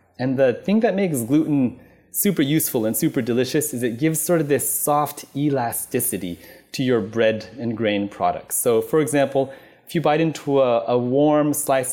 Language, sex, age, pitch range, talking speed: English, male, 30-49, 115-150 Hz, 180 wpm